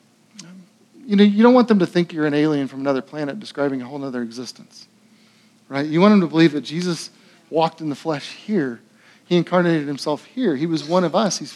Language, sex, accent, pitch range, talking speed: English, male, American, 170-225 Hz, 220 wpm